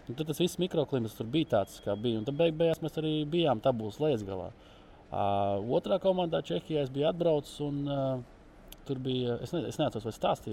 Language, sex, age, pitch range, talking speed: English, male, 20-39, 115-155 Hz, 160 wpm